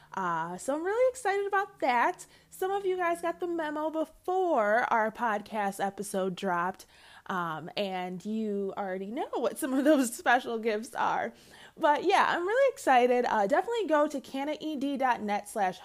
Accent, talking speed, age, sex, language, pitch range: American, 160 wpm, 20-39, female, English, 205-310 Hz